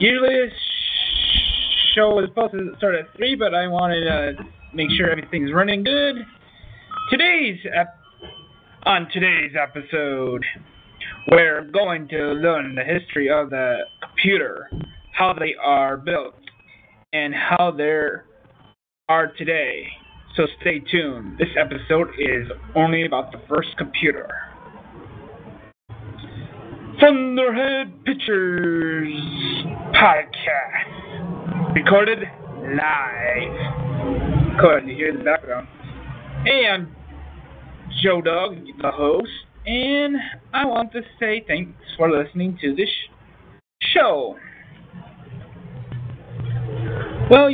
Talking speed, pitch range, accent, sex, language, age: 100 wpm, 145-205 Hz, American, male, English, 30-49